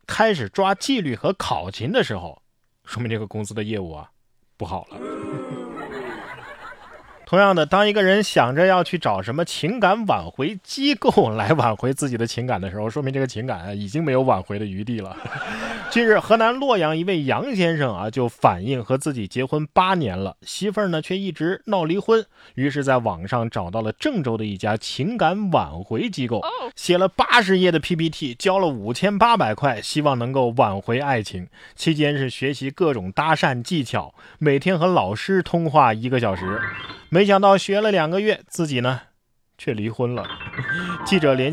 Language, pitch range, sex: Chinese, 115-175 Hz, male